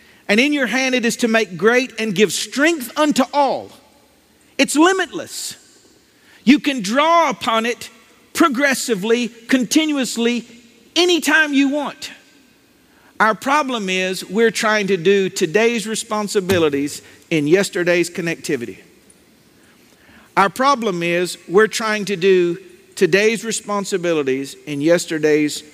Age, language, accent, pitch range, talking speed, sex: 50-69, English, American, 175-240 Hz, 115 wpm, male